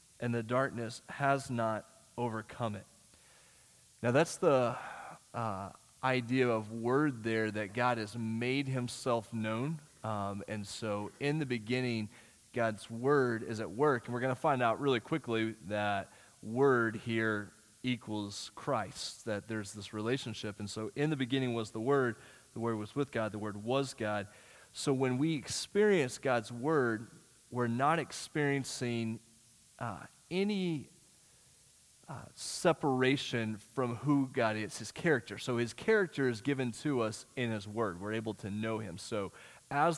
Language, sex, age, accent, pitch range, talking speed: English, male, 30-49, American, 110-140 Hz, 155 wpm